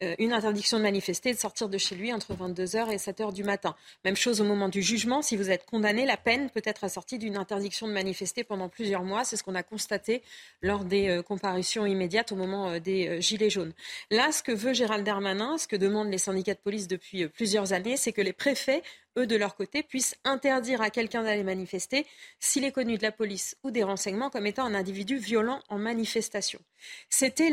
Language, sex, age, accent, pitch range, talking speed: French, female, 40-59, French, 195-245 Hz, 215 wpm